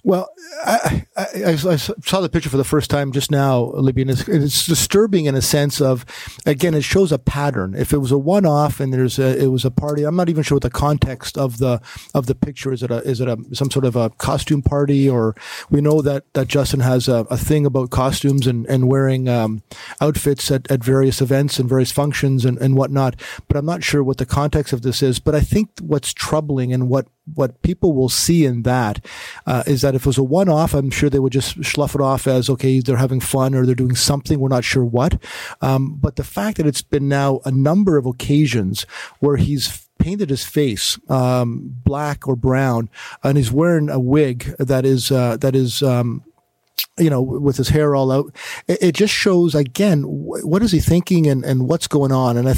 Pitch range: 130-150 Hz